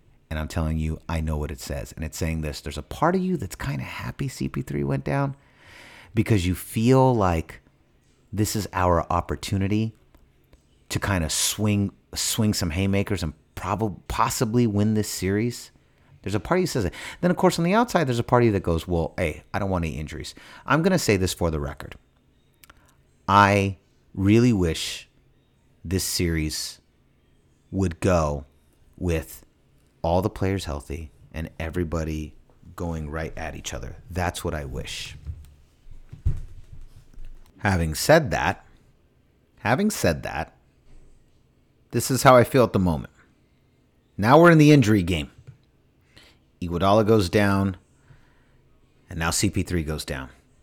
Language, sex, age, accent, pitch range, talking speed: English, male, 30-49, American, 80-110 Hz, 160 wpm